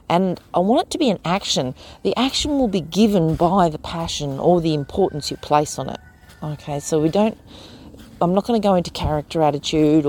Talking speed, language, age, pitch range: 210 wpm, English, 40-59, 145-200 Hz